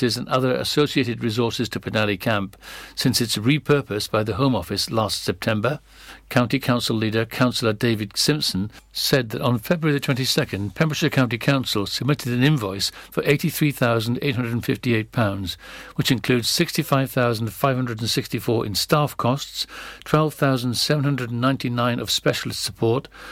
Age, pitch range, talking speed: 60-79, 110-135 Hz, 120 wpm